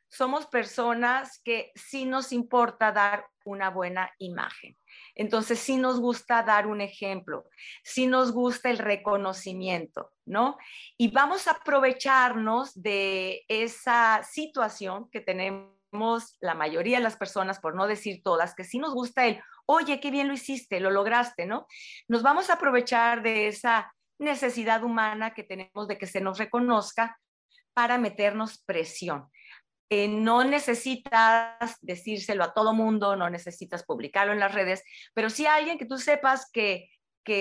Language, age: Spanish, 40-59